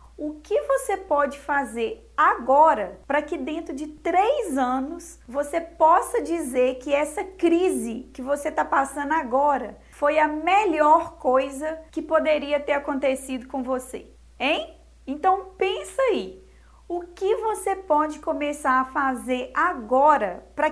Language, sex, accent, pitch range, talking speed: Portuguese, female, Brazilian, 285-355 Hz, 135 wpm